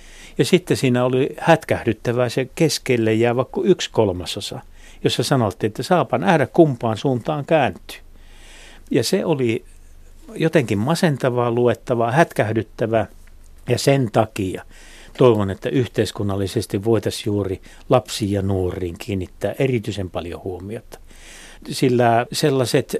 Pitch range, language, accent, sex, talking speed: 95-130 Hz, Finnish, native, male, 110 wpm